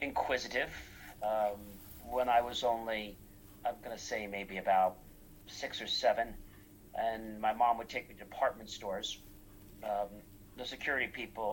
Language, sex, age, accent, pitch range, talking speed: English, male, 40-59, American, 100-120 Hz, 145 wpm